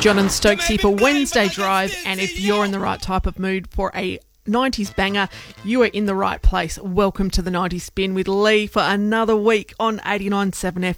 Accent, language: Australian, English